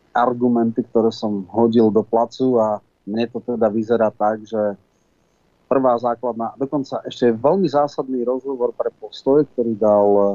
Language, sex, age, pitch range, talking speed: Slovak, male, 30-49, 110-130 Hz, 145 wpm